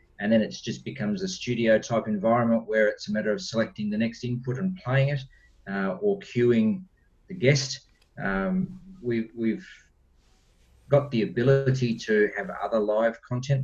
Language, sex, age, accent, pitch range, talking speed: English, male, 40-59, Australian, 110-185 Hz, 160 wpm